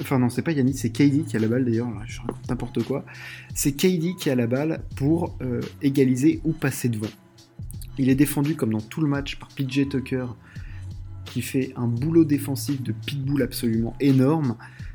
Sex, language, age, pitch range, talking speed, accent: male, French, 20-39, 125-145 Hz, 195 wpm, French